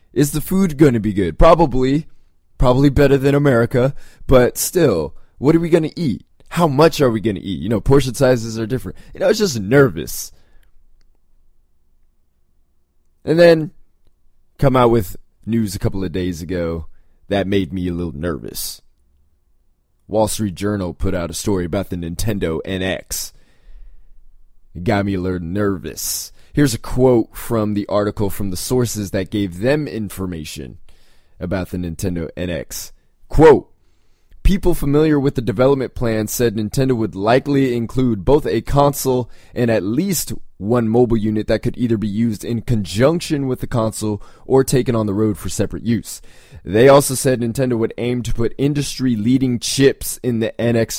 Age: 20-39